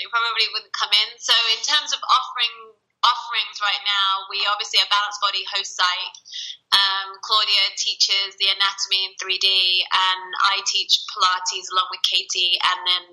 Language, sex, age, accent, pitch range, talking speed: English, female, 20-39, British, 190-220 Hz, 165 wpm